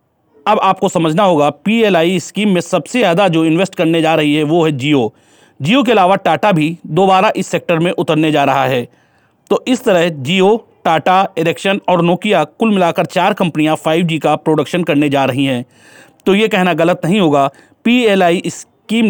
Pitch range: 155-195 Hz